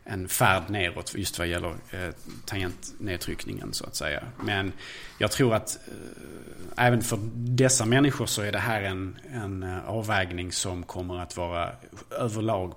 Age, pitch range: 30-49, 100-125 Hz